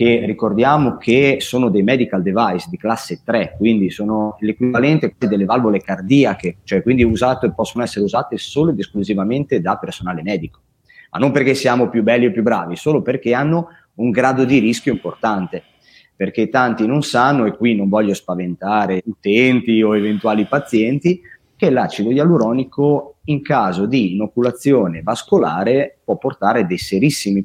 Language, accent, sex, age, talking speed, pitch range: Italian, native, male, 30-49, 150 wpm, 100-125 Hz